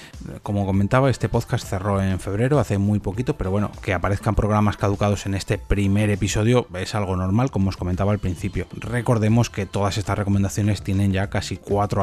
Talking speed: 185 wpm